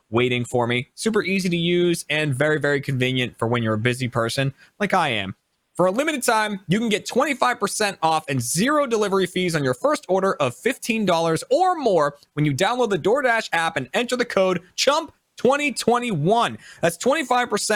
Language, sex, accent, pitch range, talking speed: English, male, American, 130-210 Hz, 180 wpm